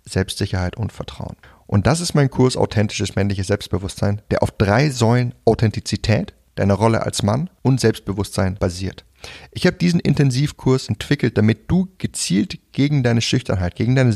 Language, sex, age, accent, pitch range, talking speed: German, male, 30-49, German, 100-130 Hz, 155 wpm